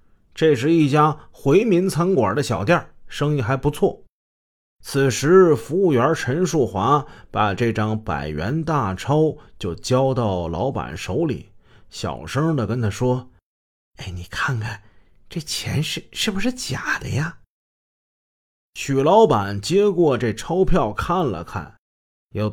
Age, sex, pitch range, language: 30-49, male, 100-160 Hz, Chinese